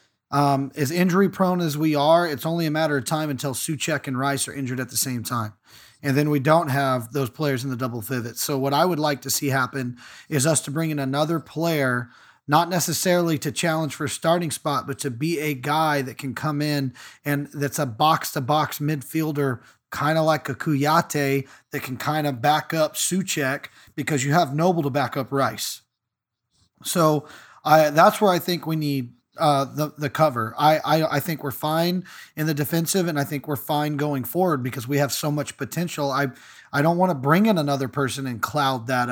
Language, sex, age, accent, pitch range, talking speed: English, male, 30-49, American, 135-160 Hz, 210 wpm